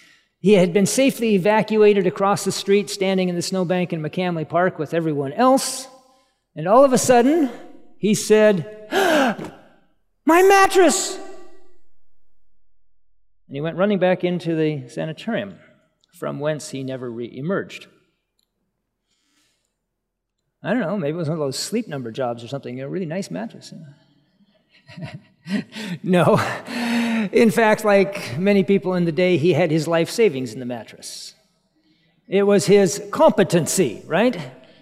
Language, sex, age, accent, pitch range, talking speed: English, male, 50-69, American, 165-225 Hz, 145 wpm